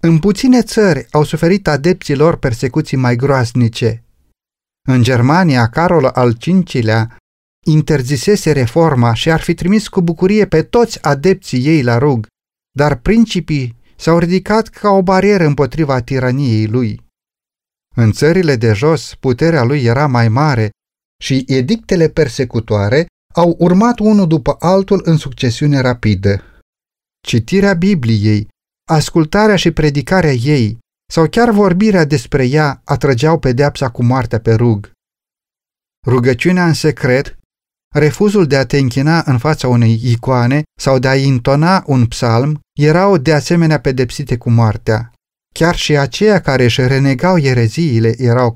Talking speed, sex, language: 135 wpm, male, Romanian